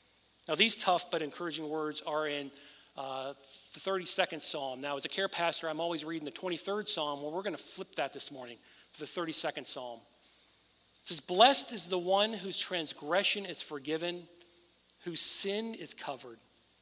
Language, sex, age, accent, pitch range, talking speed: English, male, 40-59, American, 140-170 Hz, 170 wpm